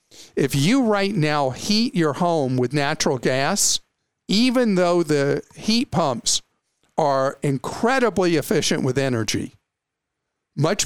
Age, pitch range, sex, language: 50-69, 135-190 Hz, male, English